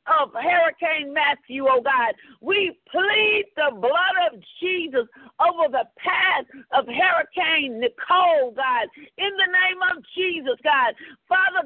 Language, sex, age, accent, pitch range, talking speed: English, female, 40-59, American, 295-380 Hz, 130 wpm